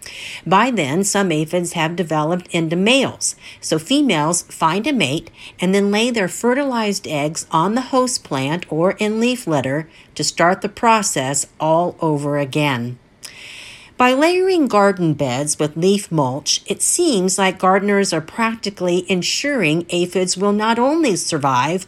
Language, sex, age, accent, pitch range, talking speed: English, female, 50-69, American, 150-215 Hz, 145 wpm